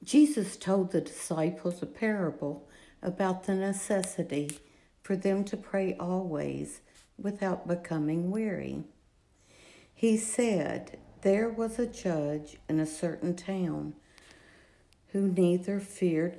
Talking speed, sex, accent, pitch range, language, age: 110 wpm, female, American, 160-200 Hz, English, 60-79